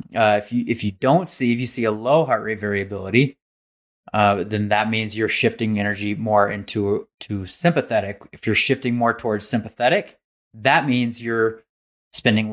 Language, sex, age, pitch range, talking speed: English, male, 20-39, 105-125 Hz, 170 wpm